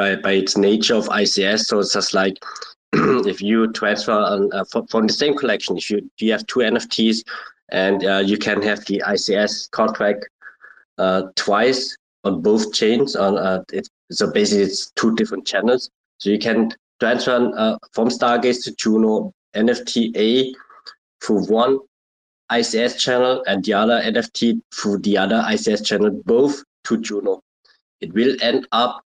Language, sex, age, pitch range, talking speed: English, male, 20-39, 100-120 Hz, 165 wpm